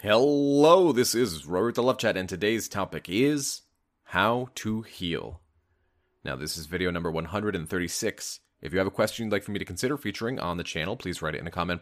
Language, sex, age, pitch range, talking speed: English, male, 30-49, 90-115 Hz, 210 wpm